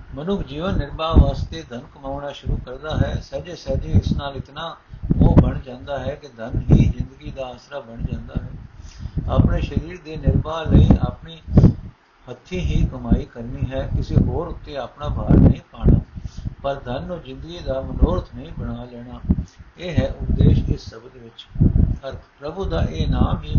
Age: 60-79